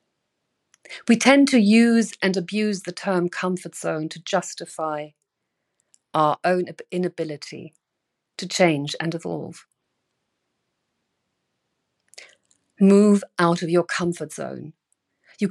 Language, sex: English, female